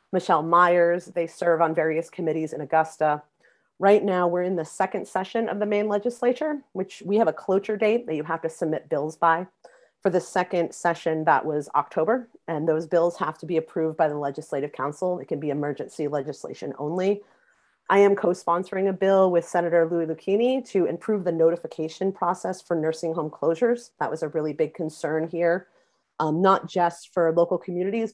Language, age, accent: English, 30-49, American